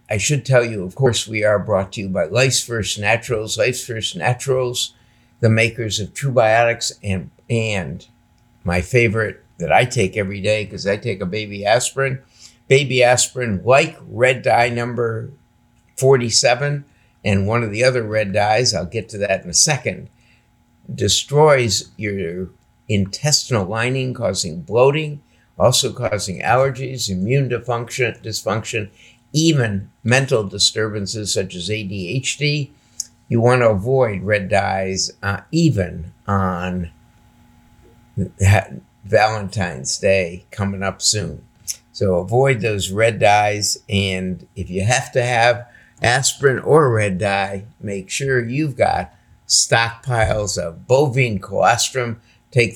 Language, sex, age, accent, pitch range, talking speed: English, male, 60-79, American, 100-125 Hz, 130 wpm